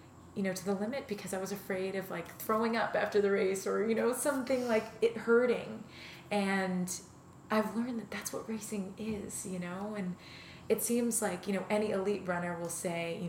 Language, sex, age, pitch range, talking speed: English, female, 20-39, 180-205 Hz, 205 wpm